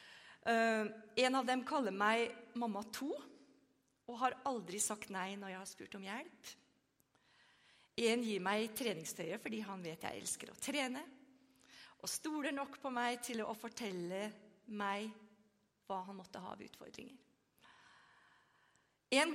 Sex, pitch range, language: female, 205-280 Hz, English